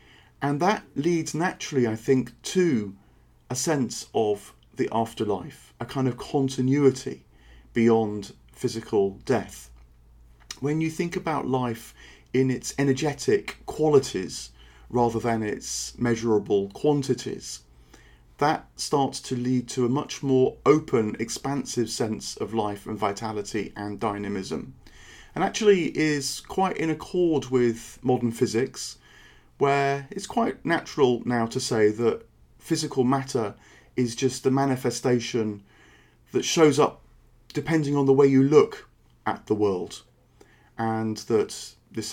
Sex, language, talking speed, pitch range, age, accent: male, English, 125 wpm, 110-135 Hz, 40-59, British